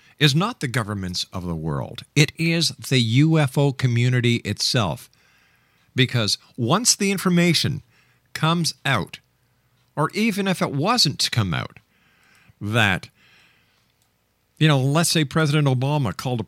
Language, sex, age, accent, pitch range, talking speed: English, male, 50-69, American, 110-140 Hz, 130 wpm